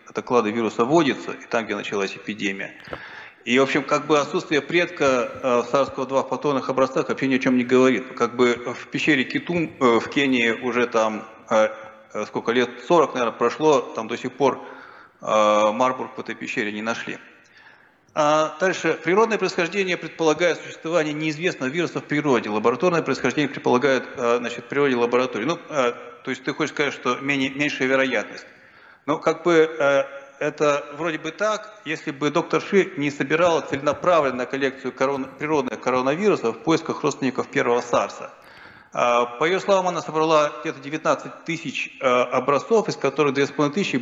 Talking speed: 145 wpm